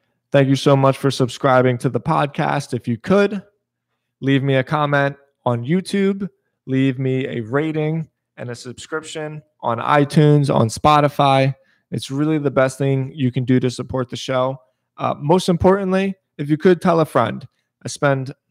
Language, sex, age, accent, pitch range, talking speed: English, male, 20-39, American, 125-150 Hz, 170 wpm